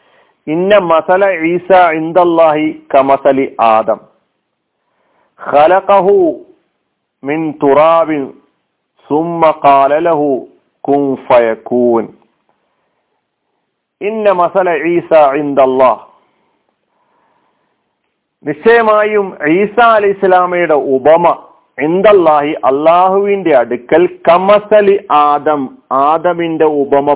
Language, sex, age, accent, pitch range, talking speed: Malayalam, male, 50-69, native, 140-190 Hz, 85 wpm